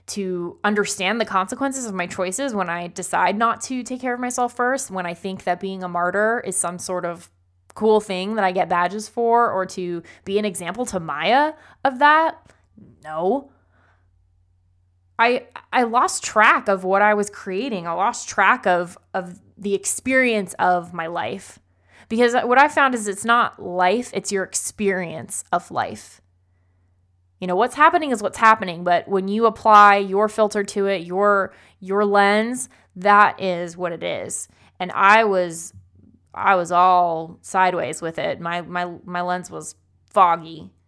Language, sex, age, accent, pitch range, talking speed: English, female, 20-39, American, 175-220 Hz, 170 wpm